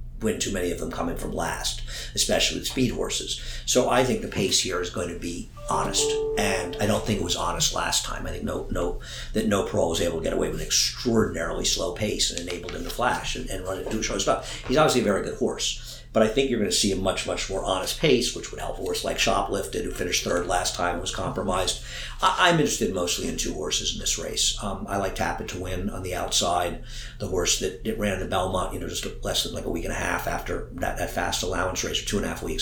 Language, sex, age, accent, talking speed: English, male, 50-69, American, 260 wpm